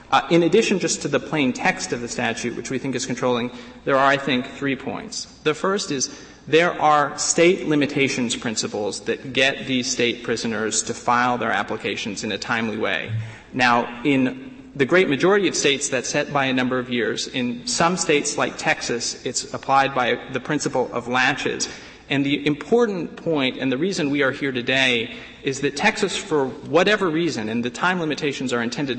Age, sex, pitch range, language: 30-49, male, 130-175 Hz, English